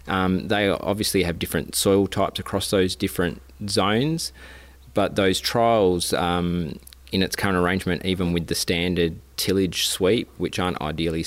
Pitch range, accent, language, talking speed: 80-90 Hz, Australian, English, 150 wpm